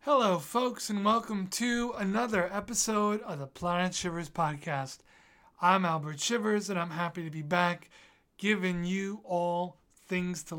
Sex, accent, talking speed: male, American, 145 wpm